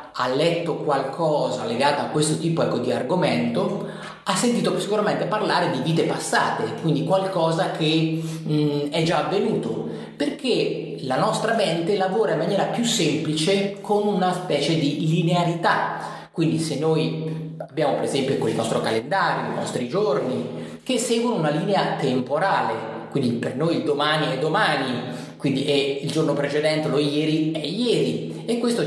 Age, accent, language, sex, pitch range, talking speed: 30-49, native, Italian, male, 145-195 Hz, 145 wpm